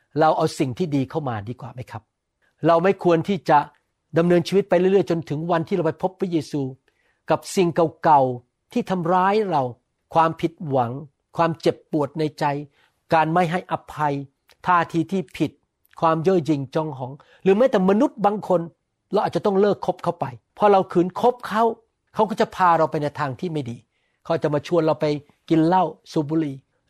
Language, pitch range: Thai, 145-185 Hz